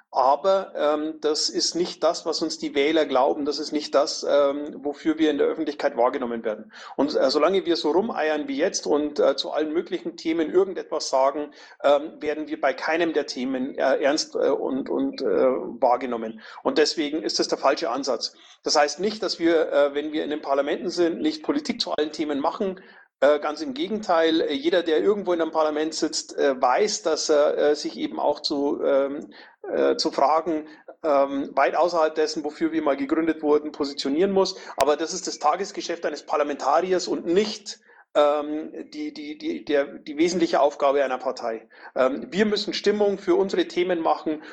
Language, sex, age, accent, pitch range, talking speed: German, male, 40-59, German, 150-205 Hz, 180 wpm